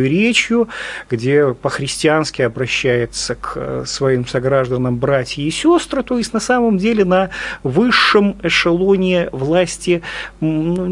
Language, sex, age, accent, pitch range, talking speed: Russian, male, 40-59, native, 140-180 Hz, 110 wpm